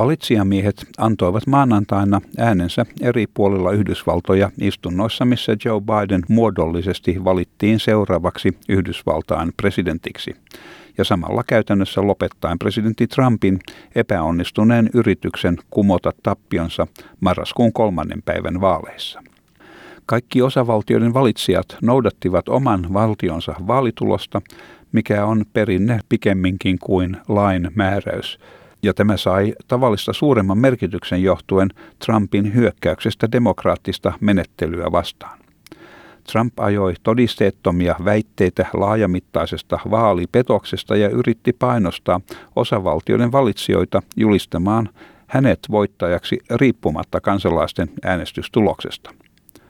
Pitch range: 95-115 Hz